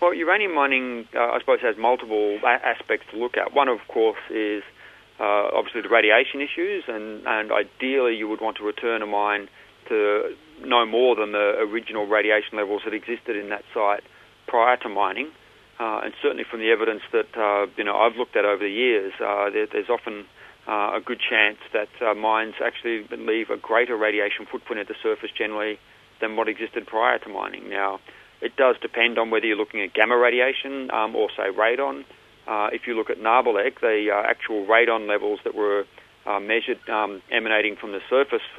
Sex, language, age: male, English, 40-59